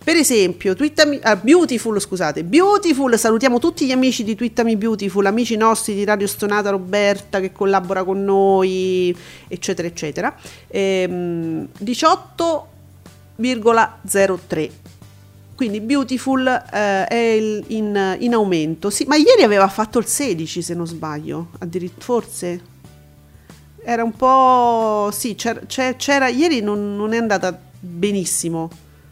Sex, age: female, 40-59